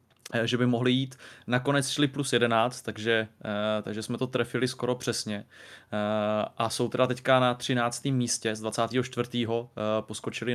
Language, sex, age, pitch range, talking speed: Czech, male, 20-39, 115-130 Hz, 140 wpm